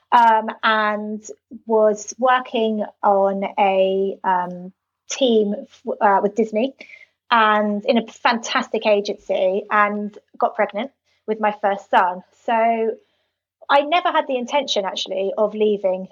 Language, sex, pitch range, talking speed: English, female, 200-235 Hz, 125 wpm